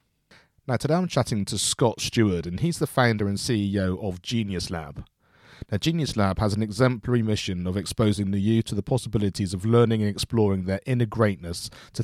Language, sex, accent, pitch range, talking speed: English, male, British, 100-120 Hz, 190 wpm